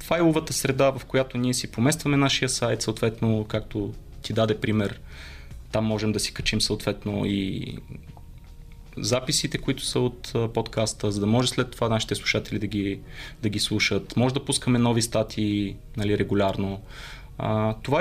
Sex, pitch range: male, 105-130 Hz